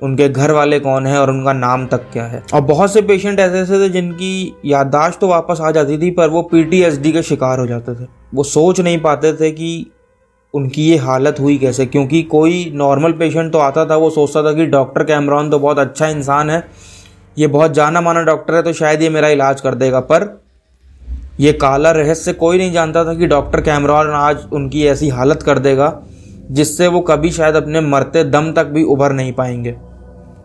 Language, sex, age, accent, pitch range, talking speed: Hindi, male, 20-39, native, 140-165 Hz, 205 wpm